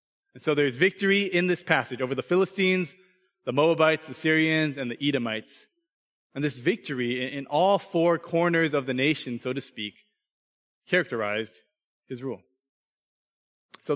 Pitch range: 130-175 Hz